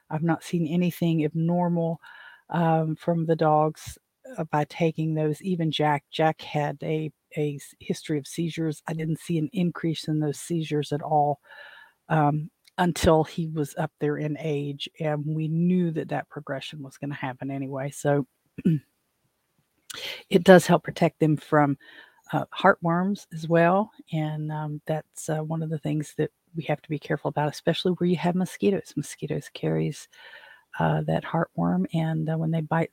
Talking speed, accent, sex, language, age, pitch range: 165 wpm, American, female, English, 50-69, 150-170 Hz